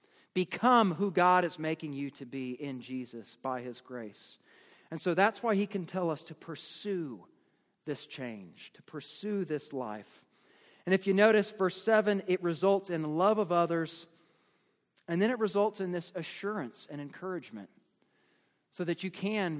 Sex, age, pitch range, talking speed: male, 40-59, 145-195 Hz, 165 wpm